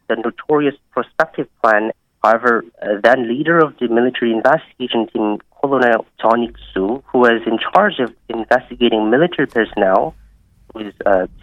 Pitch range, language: 110-140 Hz, Korean